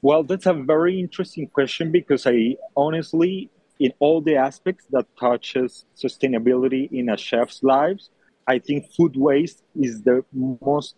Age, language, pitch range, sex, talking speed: 40-59, English, 115-150 Hz, male, 150 wpm